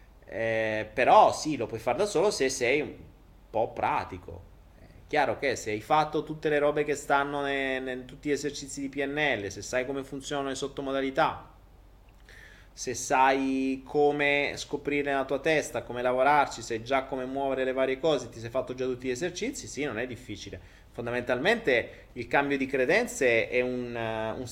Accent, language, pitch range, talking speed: native, Italian, 110-145 Hz, 175 wpm